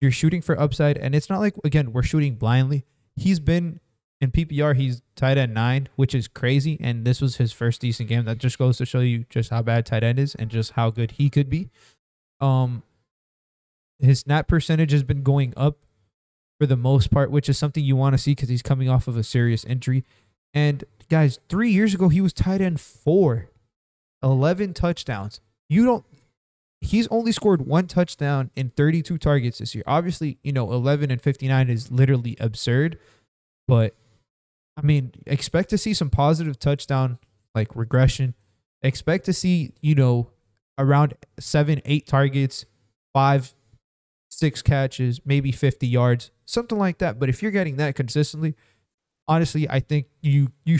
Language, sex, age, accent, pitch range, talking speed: English, male, 20-39, American, 120-150 Hz, 175 wpm